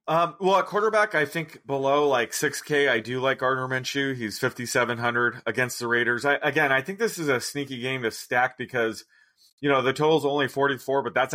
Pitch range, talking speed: 120-145 Hz, 205 wpm